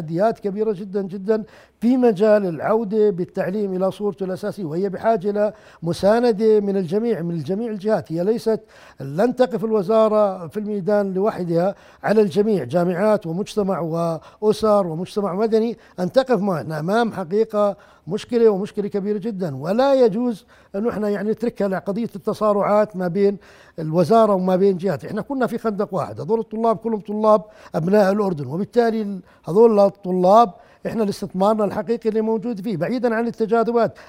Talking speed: 145 wpm